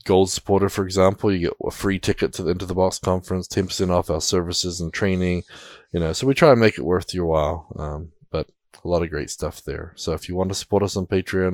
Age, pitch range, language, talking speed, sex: 20-39, 85-105 Hz, English, 255 wpm, male